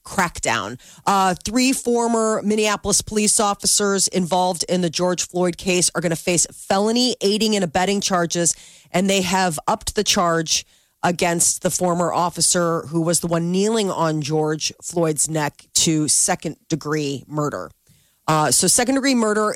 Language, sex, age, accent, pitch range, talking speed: English, female, 30-49, American, 150-180 Hz, 155 wpm